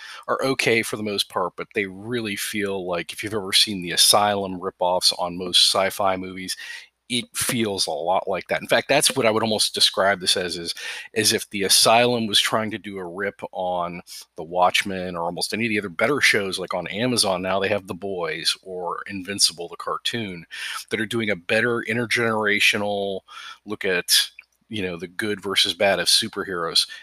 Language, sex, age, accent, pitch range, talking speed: English, male, 40-59, American, 90-110 Hz, 195 wpm